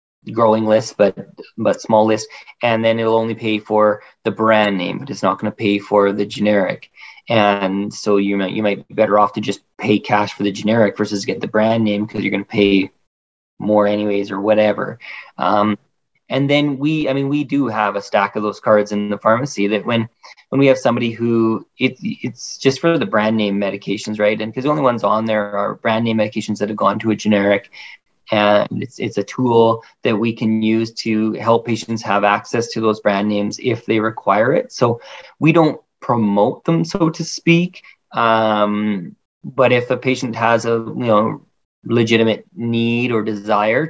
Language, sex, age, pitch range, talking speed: English, male, 20-39, 105-125 Hz, 200 wpm